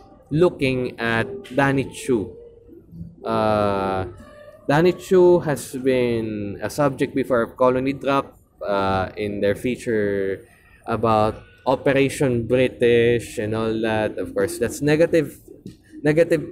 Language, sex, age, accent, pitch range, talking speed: English, male, 20-39, Filipino, 110-160 Hz, 100 wpm